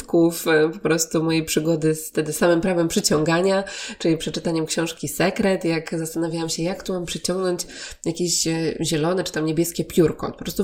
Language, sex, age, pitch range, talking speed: Polish, female, 20-39, 165-205 Hz, 160 wpm